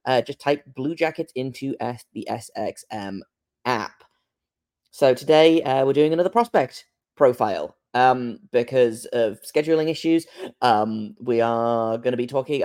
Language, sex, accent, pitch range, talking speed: English, male, British, 115-155 Hz, 140 wpm